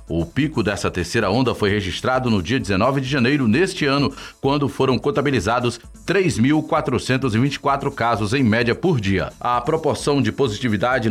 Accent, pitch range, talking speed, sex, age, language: Brazilian, 110-140 Hz, 145 wpm, male, 40-59, Portuguese